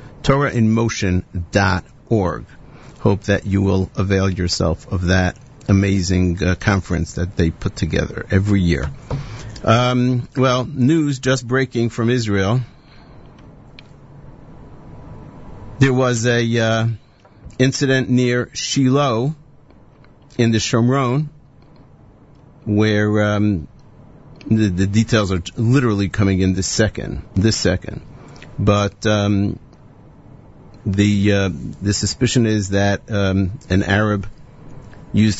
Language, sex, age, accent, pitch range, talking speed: English, male, 50-69, American, 95-125 Hz, 100 wpm